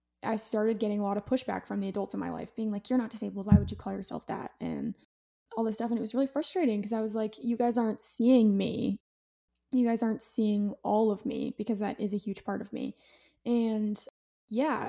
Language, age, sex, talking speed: English, 10-29, female, 240 wpm